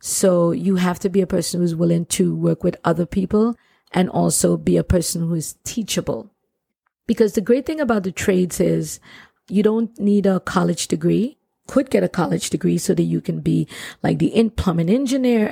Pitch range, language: 170-200 Hz, English